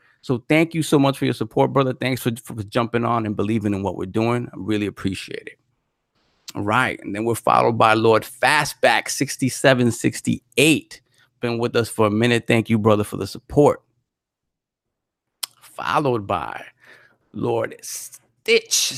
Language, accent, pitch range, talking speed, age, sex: English, American, 110-135 Hz, 160 wpm, 30-49, male